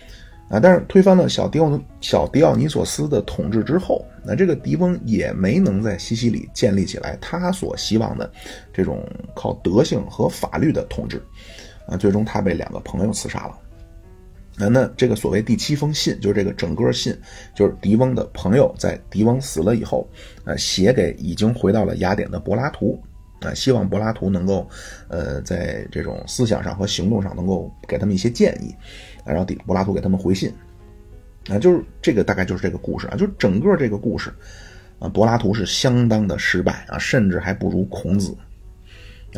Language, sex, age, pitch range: Chinese, male, 30-49, 95-115 Hz